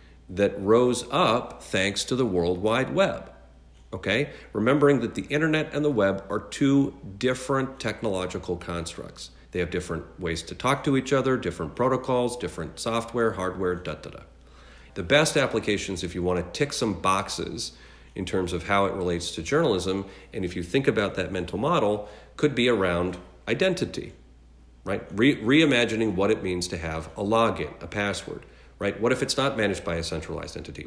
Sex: male